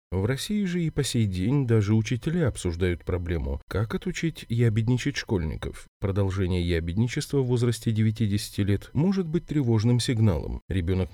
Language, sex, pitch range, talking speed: Russian, male, 90-120 Hz, 140 wpm